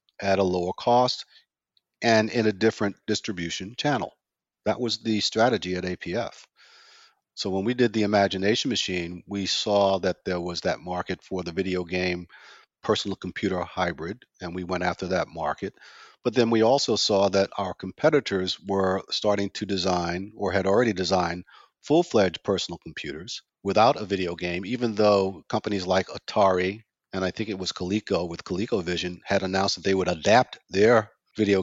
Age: 50-69